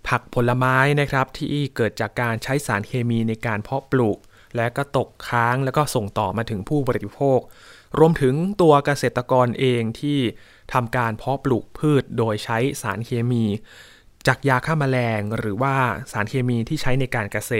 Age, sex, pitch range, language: 20-39, male, 110-135 Hz, Thai